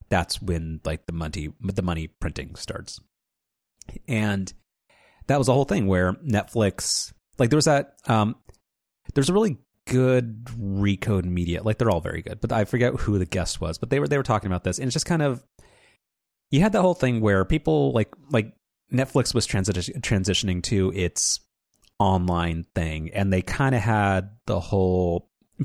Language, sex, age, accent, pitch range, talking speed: English, male, 30-49, American, 90-115 Hz, 180 wpm